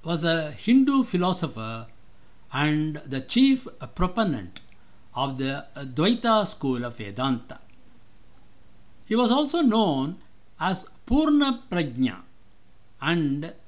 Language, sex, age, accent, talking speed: English, male, 60-79, Indian, 90 wpm